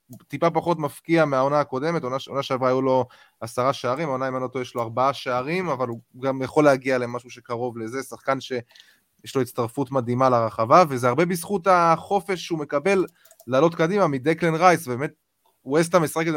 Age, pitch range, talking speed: 20-39, 125-160 Hz, 170 wpm